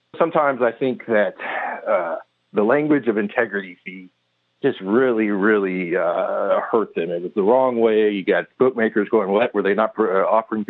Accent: American